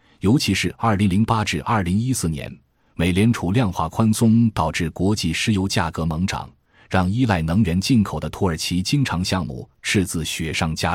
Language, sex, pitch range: Chinese, male, 80-110 Hz